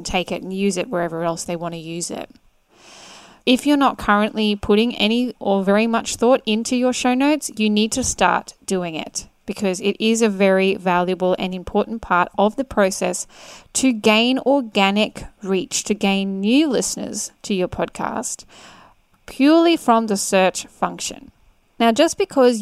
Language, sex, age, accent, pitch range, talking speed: English, female, 10-29, Australian, 185-235 Hz, 165 wpm